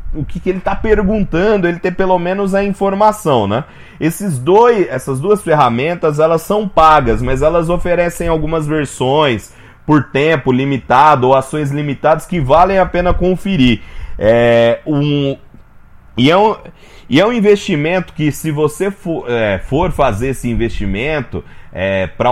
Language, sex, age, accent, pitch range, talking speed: Portuguese, male, 30-49, Brazilian, 135-185 Hz, 155 wpm